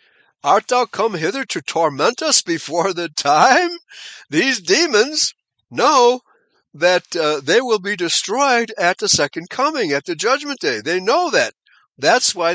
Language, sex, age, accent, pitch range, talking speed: English, male, 60-79, American, 175-245 Hz, 155 wpm